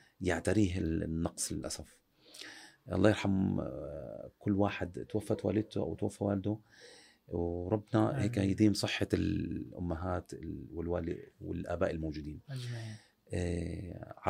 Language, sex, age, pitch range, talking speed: Arabic, male, 40-59, 90-115 Hz, 90 wpm